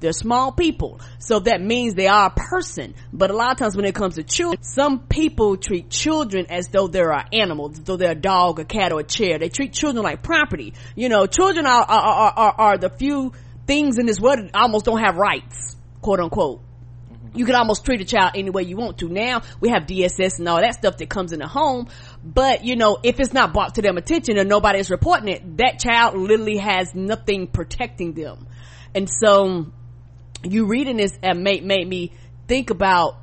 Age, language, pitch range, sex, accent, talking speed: 30-49, English, 170-215 Hz, female, American, 210 wpm